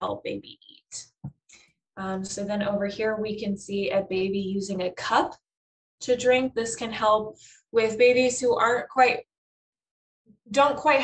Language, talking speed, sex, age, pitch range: English, 150 wpm, female, 10-29, 195-245 Hz